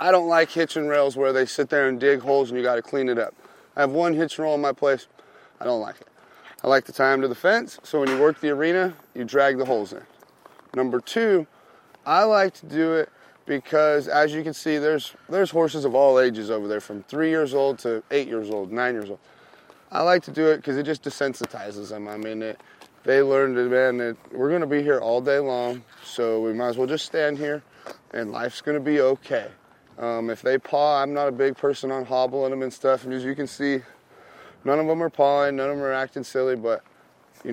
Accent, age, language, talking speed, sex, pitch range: American, 30-49, English, 240 wpm, male, 125-150 Hz